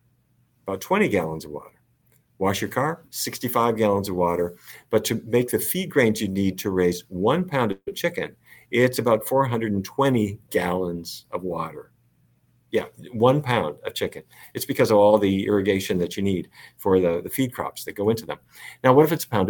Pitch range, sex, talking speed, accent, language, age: 95-125 Hz, male, 190 wpm, American, English, 50-69